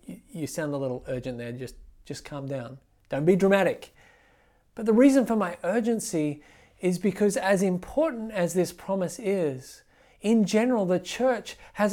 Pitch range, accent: 155-210 Hz, Australian